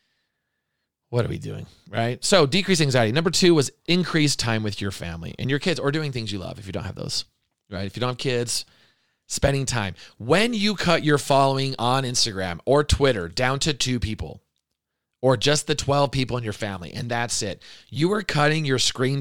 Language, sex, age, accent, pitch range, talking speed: English, male, 30-49, American, 110-145 Hz, 205 wpm